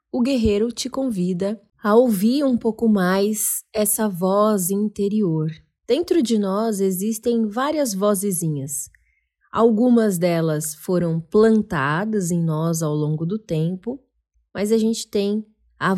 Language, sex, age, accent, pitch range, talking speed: Portuguese, female, 20-39, Brazilian, 180-225 Hz, 125 wpm